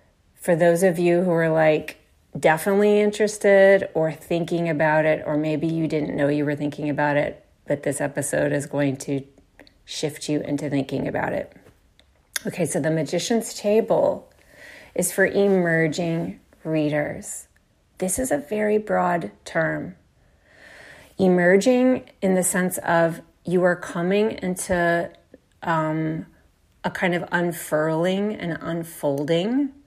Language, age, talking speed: English, 30-49, 135 wpm